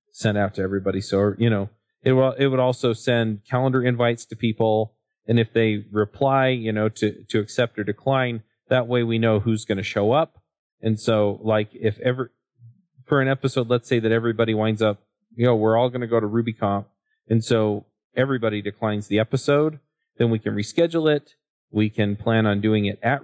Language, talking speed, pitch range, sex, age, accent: English, 200 wpm, 105-125 Hz, male, 40-59, American